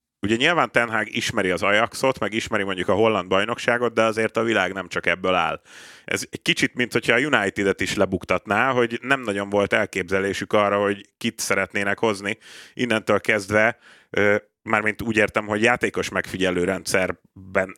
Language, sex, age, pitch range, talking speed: Hungarian, male, 30-49, 95-110 Hz, 160 wpm